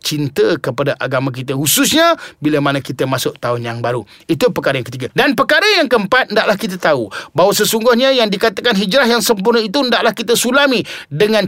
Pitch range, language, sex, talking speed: 165-225 Hz, Malay, male, 185 wpm